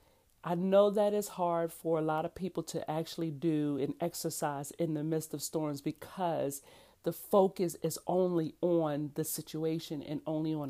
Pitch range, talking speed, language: 155-190 Hz, 175 wpm, English